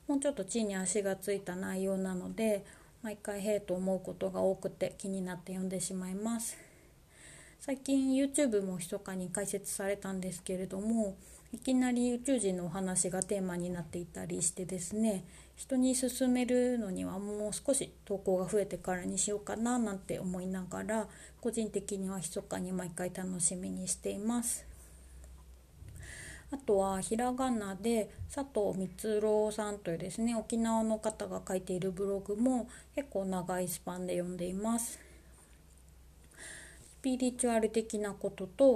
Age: 30-49